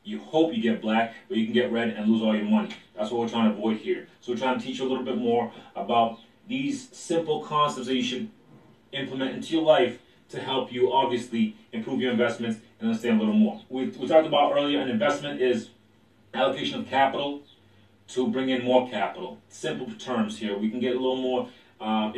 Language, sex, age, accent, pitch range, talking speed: English, male, 30-49, American, 115-145 Hz, 220 wpm